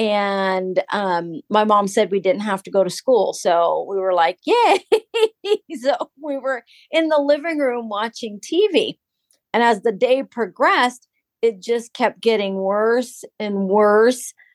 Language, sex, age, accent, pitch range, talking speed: English, female, 40-59, American, 205-280 Hz, 155 wpm